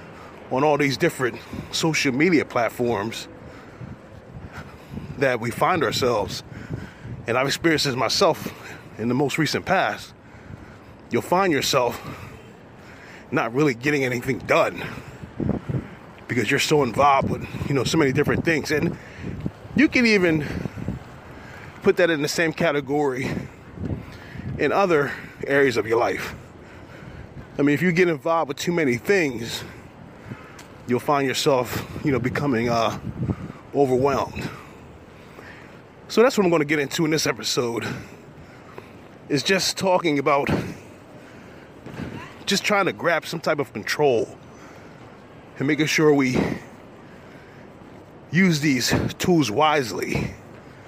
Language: English